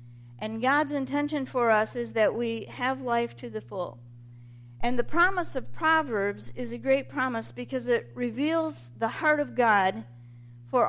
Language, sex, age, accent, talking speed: English, female, 50-69, American, 165 wpm